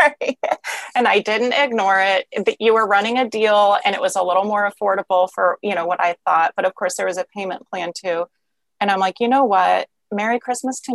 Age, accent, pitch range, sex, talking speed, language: 30-49, American, 175-205 Hz, female, 230 wpm, English